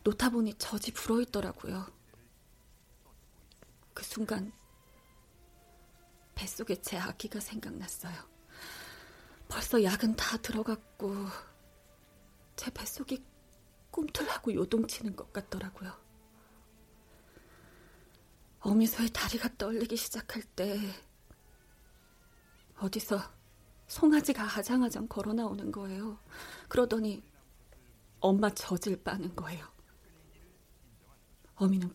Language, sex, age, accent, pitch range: Korean, female, 30-49, native, 195-230 Hz